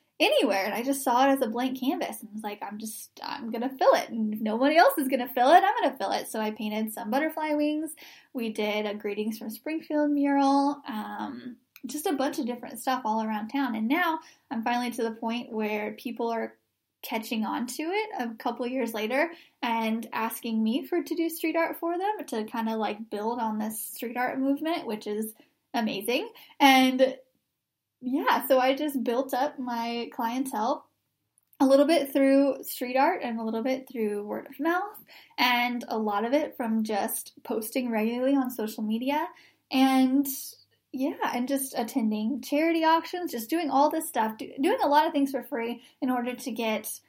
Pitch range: 225-290 Hz